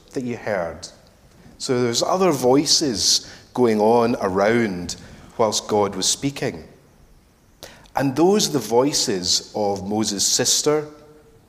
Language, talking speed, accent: English, 115 wpm, British